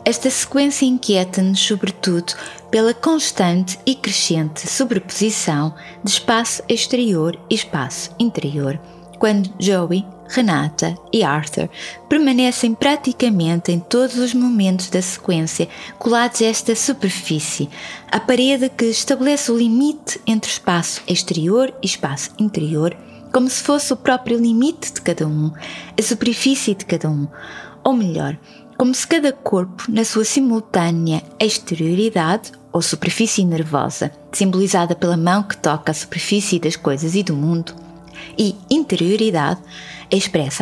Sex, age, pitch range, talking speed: female, 20-39, 170-230 Hz, 125 wpm